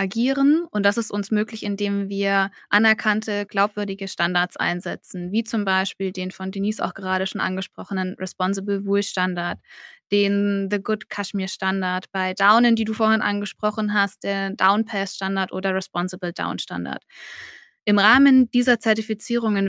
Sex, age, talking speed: female, 20-39, 130 wpm